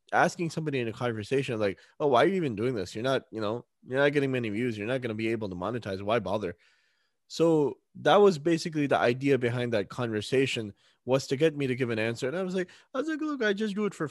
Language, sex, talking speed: English, male, 265 wpm